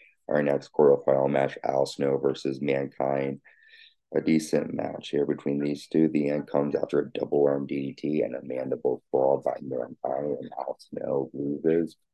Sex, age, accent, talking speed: male, 30-49, American, 165 wpm